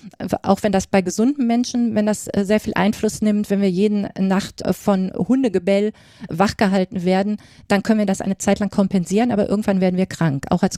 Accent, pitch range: German, 200-235 Hz